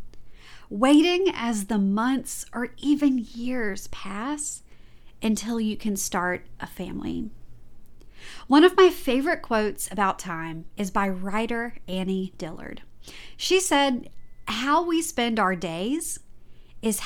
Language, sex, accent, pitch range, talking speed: English, female, American, 195-290 Hz, 120 wpm